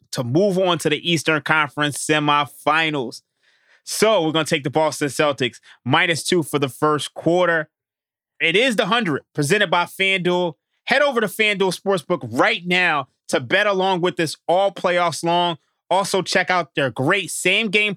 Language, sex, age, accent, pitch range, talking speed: English, male, 20-39, American, 155-195 Hz, 165 wpm